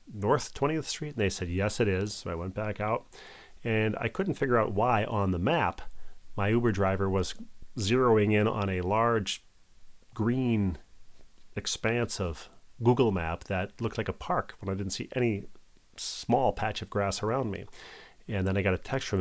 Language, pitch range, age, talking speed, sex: English, 95-110 Hz, 40-59, 185 wpm, male